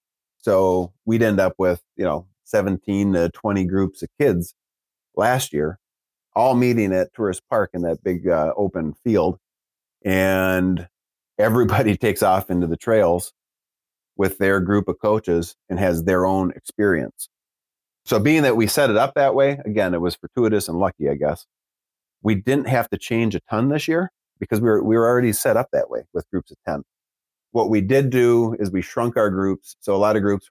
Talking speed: 190 wpm